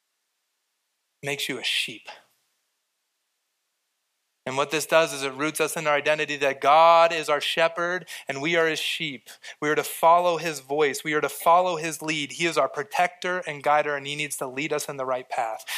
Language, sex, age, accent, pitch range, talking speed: English, male, 30-49, American, 155-185 Hz, 200 wpm